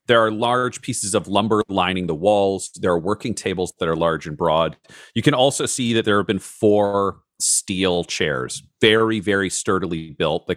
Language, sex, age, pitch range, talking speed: English, male, 40-59, 90-115 Hz, 195 wpm